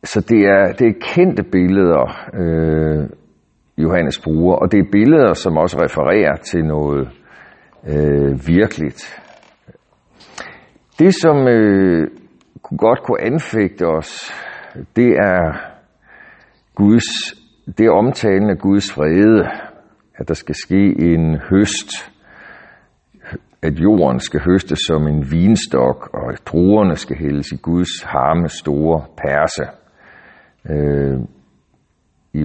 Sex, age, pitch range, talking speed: male, 60-79, 75-100 Hz, 115 wpm